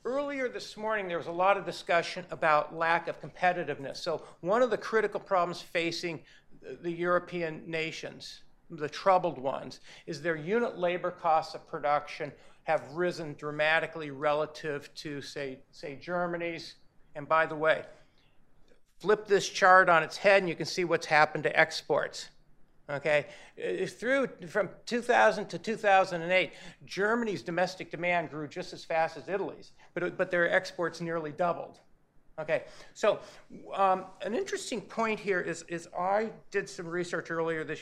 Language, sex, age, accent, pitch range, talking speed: English, male, 50-69, American, 160-195 Hz, 150 wpm